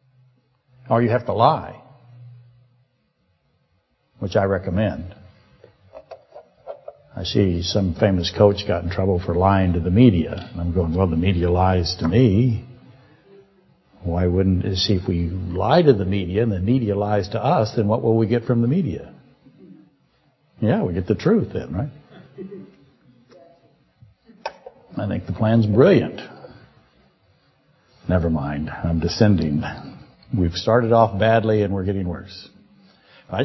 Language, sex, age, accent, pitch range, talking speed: English, male, 60-79, American, 100-140 Hz, 140 wpm